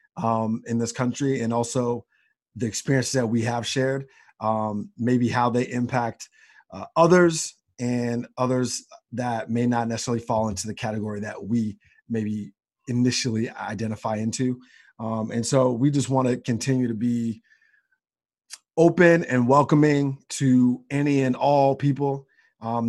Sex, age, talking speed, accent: male, 30-49, 140 wpm, American